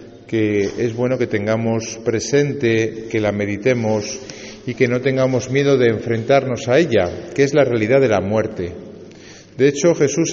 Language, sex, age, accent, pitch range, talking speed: Spanish, male, 50-69, Spanish, 110-140 Hz, 165 wpm